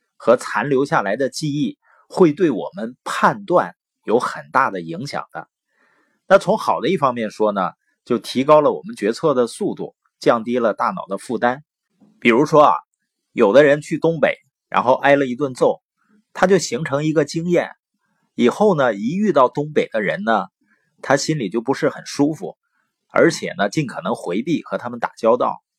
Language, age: Chinese, 30-49